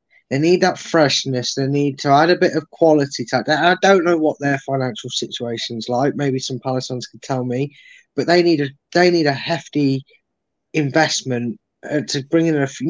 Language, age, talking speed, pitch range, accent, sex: English, 10-29, 205 wpm, 125-155 Hz, British, male